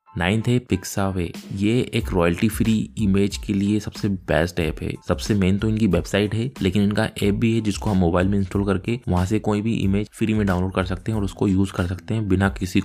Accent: native